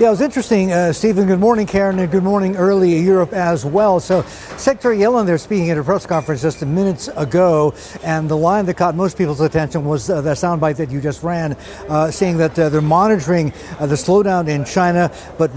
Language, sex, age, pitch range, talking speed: English, male, 50-69, 160-195 Hz, 220 wpm